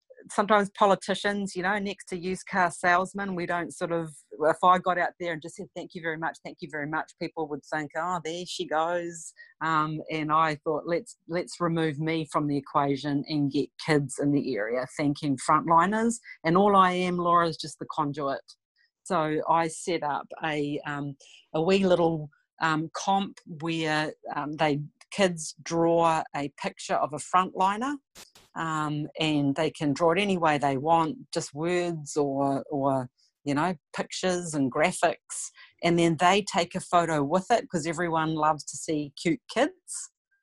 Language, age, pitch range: English, 40-59, 155-185 Hz